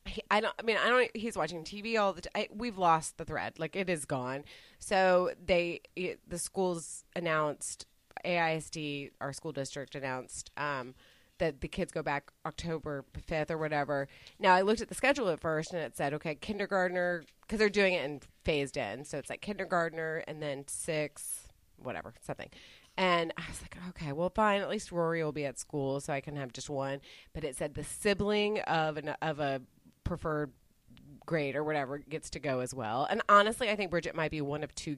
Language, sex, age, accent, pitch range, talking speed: English, female, 30-49, American, 145-185 Hz, 200 wpm